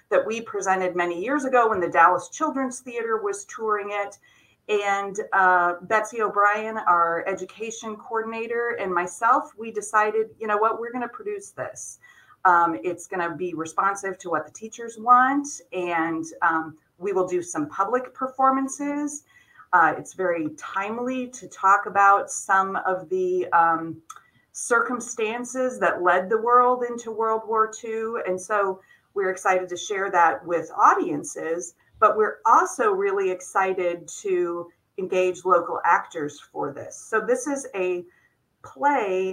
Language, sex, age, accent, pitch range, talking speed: English, female, 30-49, American, 180-225 Hz, 145 wpm